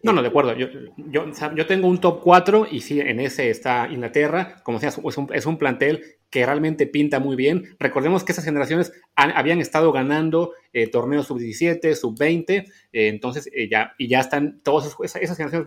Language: Spanish